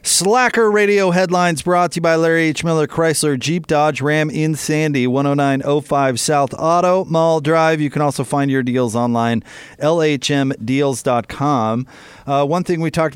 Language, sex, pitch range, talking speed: English, male, 135-160 Hz, 155 wpm